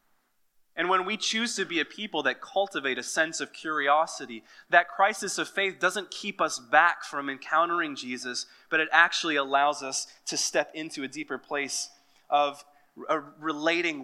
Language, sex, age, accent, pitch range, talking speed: English, male, 20-39, American, 145-200 Hz, 160 wpm